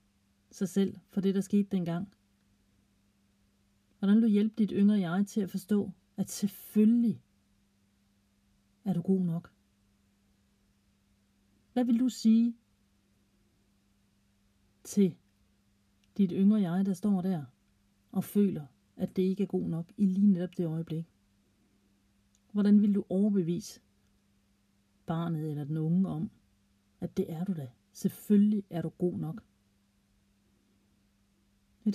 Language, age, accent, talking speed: Danish, 40-59, native, 125 wpm